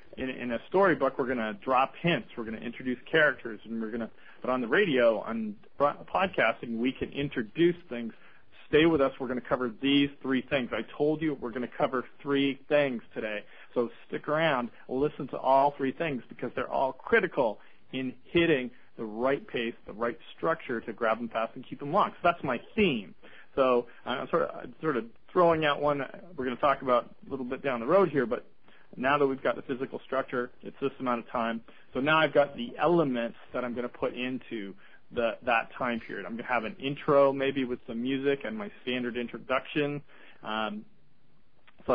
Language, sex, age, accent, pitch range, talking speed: English, male, 40-59, American, 120-145 Hz, 200 wpm